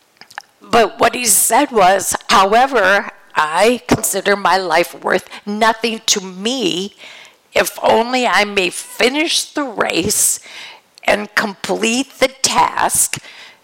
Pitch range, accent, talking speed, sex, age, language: 195-245 Hz, American, 110 wpm, female, 60-79, English